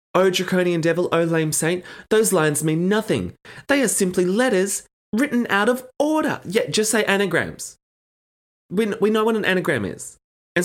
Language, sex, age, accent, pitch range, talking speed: English, male, 20-39, Australian, 115-185 Hz, 165 wpm